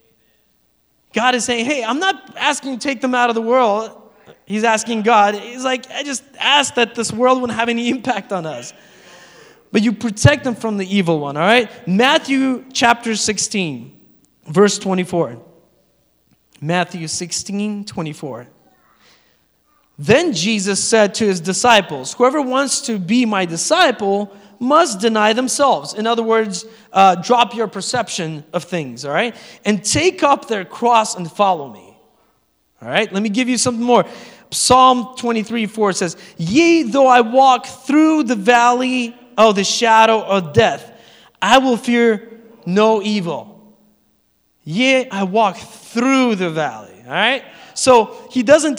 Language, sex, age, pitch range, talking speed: English, male, 20-39, 200-255 Hz, 155 wpm